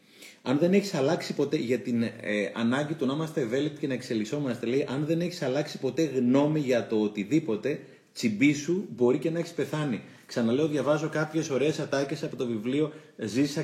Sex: male